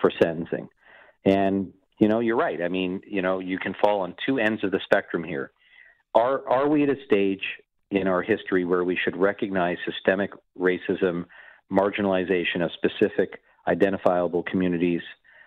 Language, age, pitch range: English, 50-69, 90-100 Hz